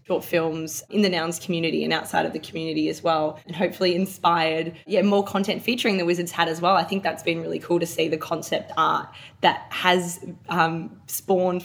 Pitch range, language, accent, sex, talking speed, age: 160-180 Hz, English, Australian, female, 205 wpm, 20-39